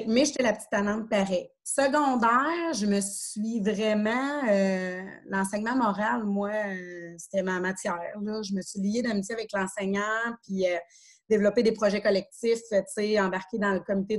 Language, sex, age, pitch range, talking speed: French, female, 30-49, 200-245 Hz, 150 wpm